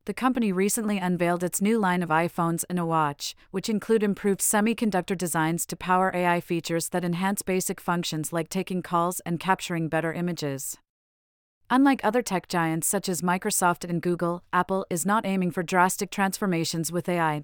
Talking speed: 170 wpm